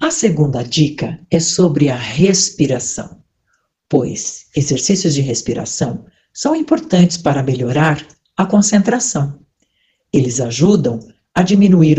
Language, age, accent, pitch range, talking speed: Portuguese, 60-79, Brazilian, 145-200 Hz, 105 wpm